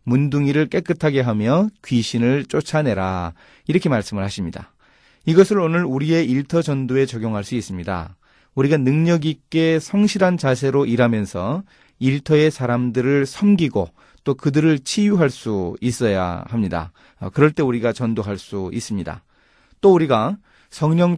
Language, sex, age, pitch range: Korean, male, 30-49, 105-155 Hz